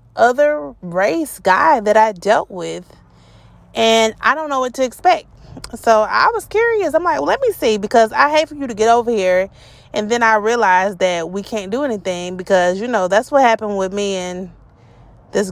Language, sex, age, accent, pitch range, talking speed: English, female, 30-49, American, 160-265 Hz, 195 wpm